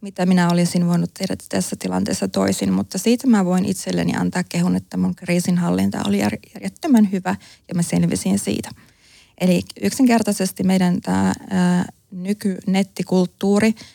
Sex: female